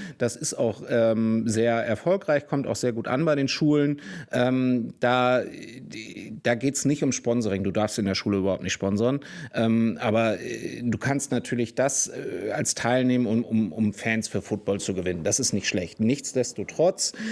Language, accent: German, German